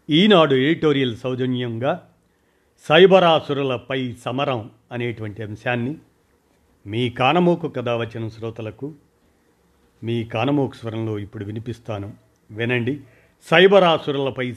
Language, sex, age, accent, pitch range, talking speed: Telugu, male, 50-69, native, 120-165 Hz, 75 wpm